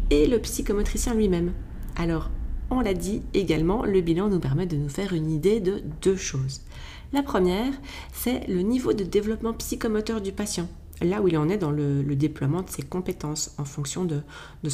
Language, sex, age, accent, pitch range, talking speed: French, female, 30-49, French, 155-210 Hz, 190 wpm